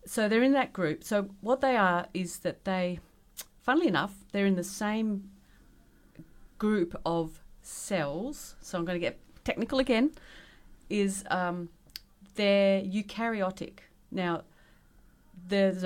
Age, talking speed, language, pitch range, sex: 40-59, 130 wpm, English, 170-210 Hz, female